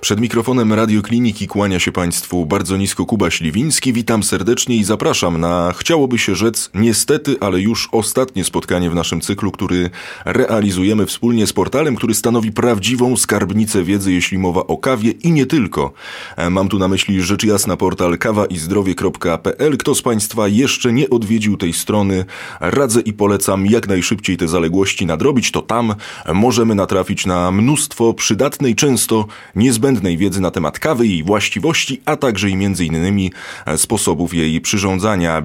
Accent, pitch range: native, 95-120 Hz